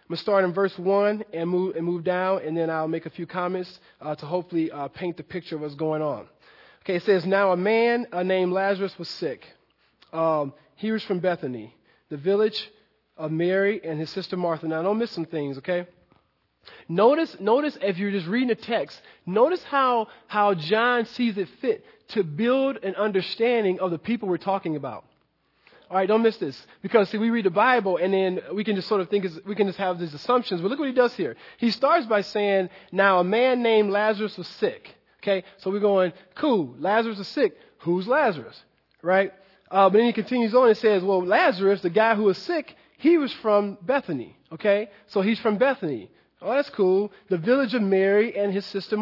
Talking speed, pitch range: 210 wpm, 180-220 Hz